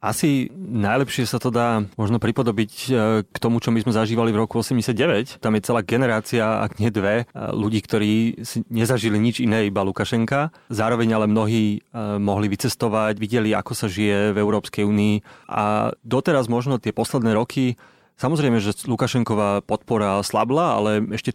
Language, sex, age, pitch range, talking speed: Slovak, male, 30-49, 105-120 Hz, 155 wpm